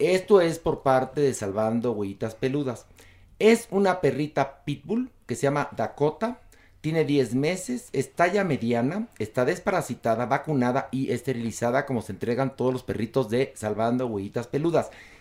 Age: 40-59